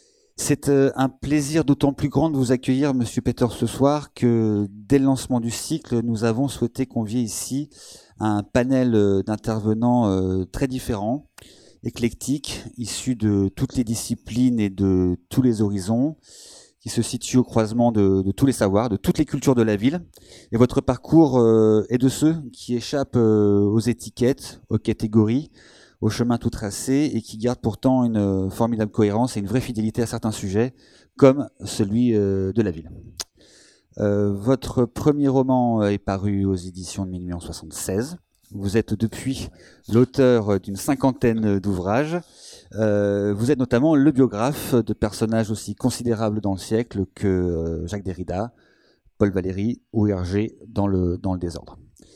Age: 30-49